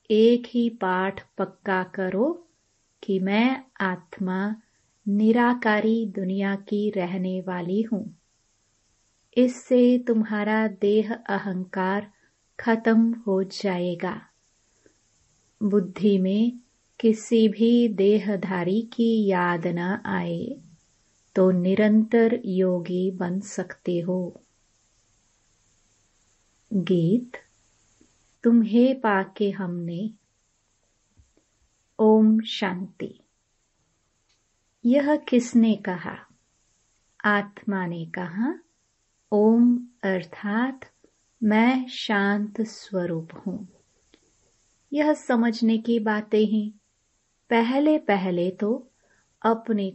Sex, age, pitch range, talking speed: female, 30-49, 185-225 Hz, 75 wpm